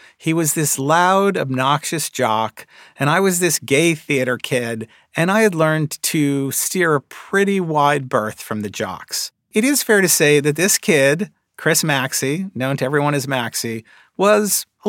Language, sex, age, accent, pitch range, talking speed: English, male, 50-69, American, 130-180 Hz, 175 wpm